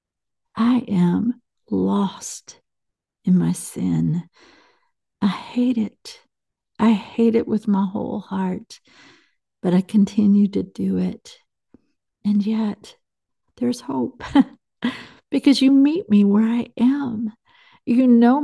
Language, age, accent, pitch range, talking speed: English, 50-69, American, 180-230 Hz, 115 wpm